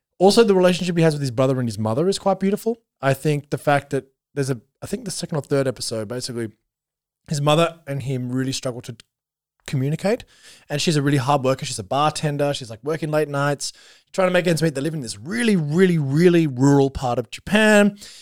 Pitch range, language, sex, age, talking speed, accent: 125-160 Hz, English, male, 20-39, 225 wpm, Australian